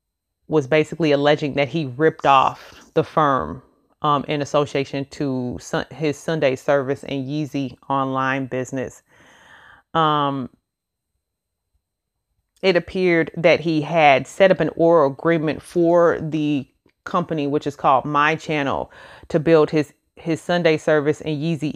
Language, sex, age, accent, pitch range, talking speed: English, female, 30-49, American, 140-165 Hz, 130 wpm